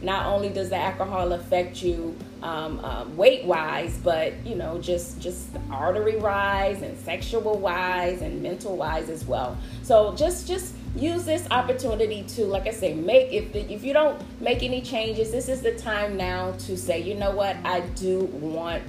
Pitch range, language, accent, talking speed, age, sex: 200-300 Hz, English, American, 170 wpm, 30-49, female